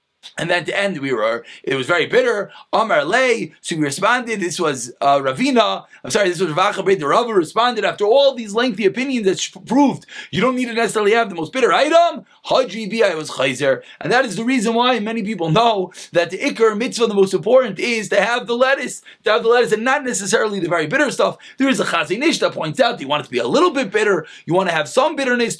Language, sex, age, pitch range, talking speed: English, male, 30-49, 190-255 Hz, 240 wpm